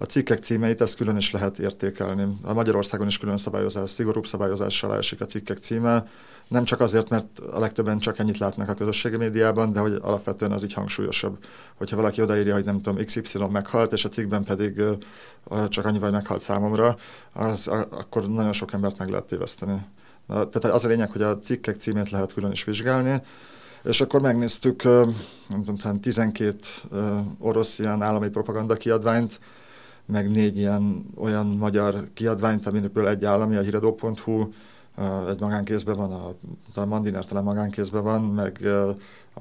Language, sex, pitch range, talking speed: Hungarian, male, 100-110 Hz, 160 wpm